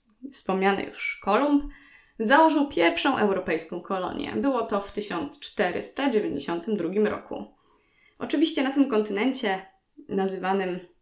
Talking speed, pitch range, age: 95 wpm, 200-265 Hz, 20-39